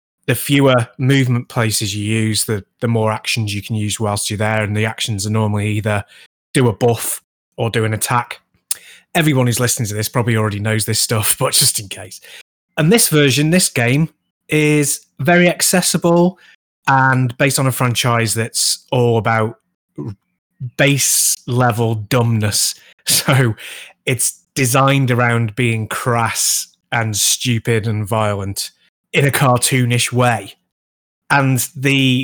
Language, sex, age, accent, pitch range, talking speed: English, male, 20-39, British, 110-135 Hz, 145 wpm